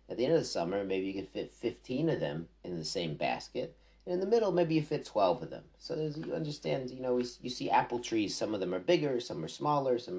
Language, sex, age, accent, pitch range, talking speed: English, male, 40-59, American, 95-150 Hz, 275 wpm